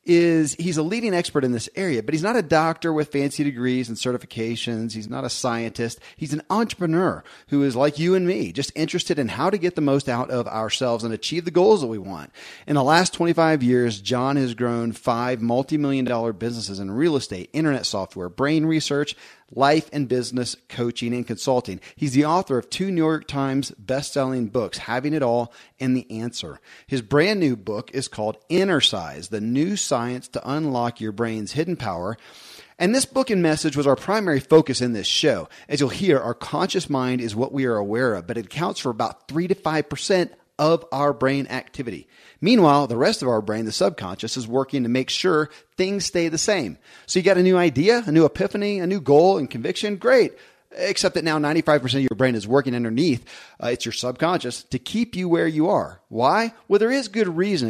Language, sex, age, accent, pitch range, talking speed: English, male, 30-49, American, 120-170 Hz, 210 wpm